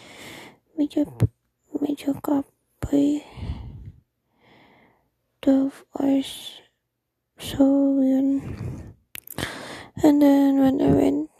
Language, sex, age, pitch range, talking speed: Filipino, female, 20-39, 280-300 Hz, 60 wpm